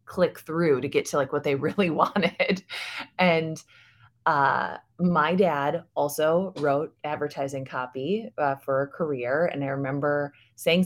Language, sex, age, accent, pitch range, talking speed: English, female, 20-39, American, 135-160 Hz, 145 wpm